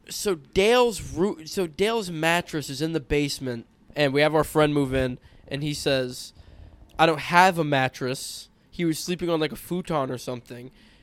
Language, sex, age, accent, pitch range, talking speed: English, male, 20-39, American, 145-180 Hz, 180 wpm